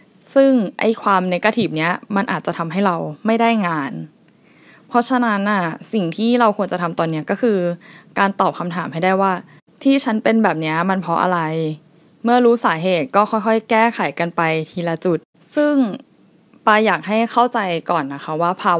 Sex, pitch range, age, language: female, 170-220 Hz, 20-39, Thai